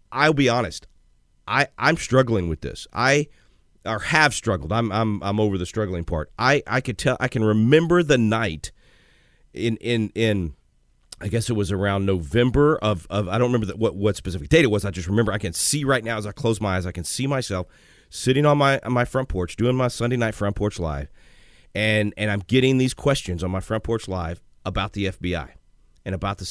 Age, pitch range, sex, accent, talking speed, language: 40-59, 95-130 Hz, male, American, 220 wpm, English